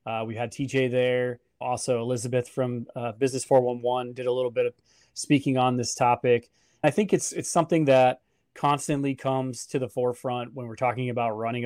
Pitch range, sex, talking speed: 120-135 Hz, male, 185 wpm